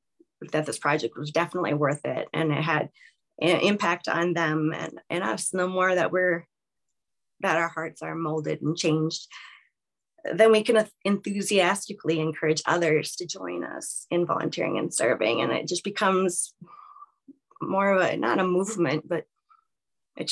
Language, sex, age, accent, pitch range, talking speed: English, female, 20-39, American, 165-200 Hz, 160 wpm